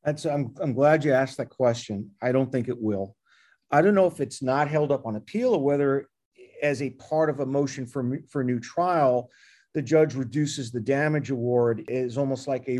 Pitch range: 125-155 Hz